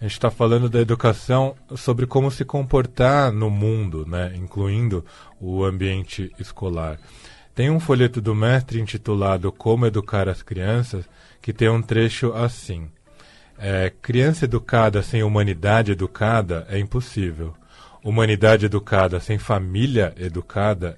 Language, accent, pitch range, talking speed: Portuguese, Brazilian, 95-120 Hz, 125 wpm